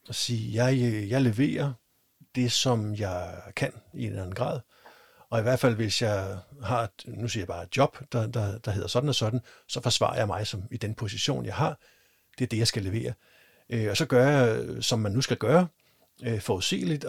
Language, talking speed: Danish, 215 wpm